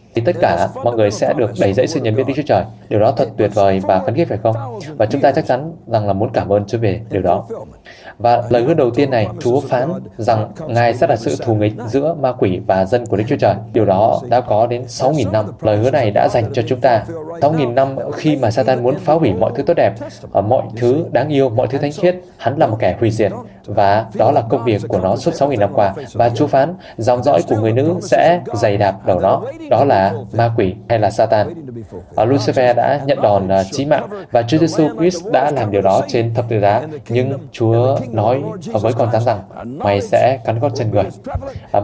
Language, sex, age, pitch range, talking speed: Vietnamese, male, 20-39, 110-140 Hz, 240 wpm